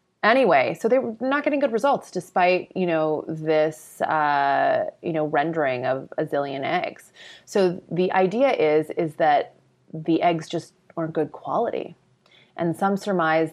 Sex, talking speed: female, 155 wpm